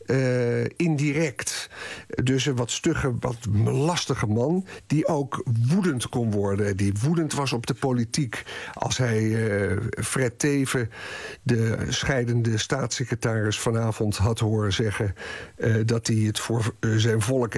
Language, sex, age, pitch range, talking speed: Dutch, male, 50-69, 110-135 Hz, 135 wpm